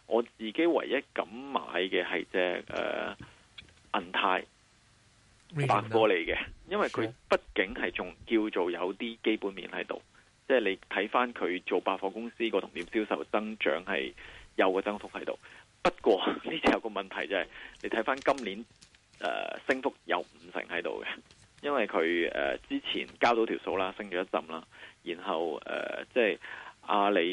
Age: 30-49